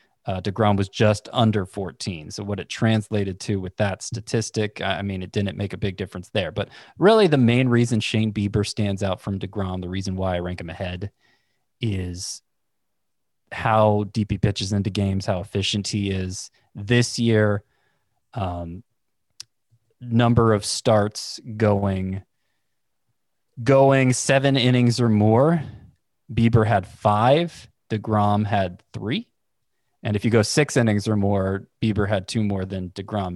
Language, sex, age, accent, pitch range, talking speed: English, male, 20-39, American, 100-115 Hz, 150 wpm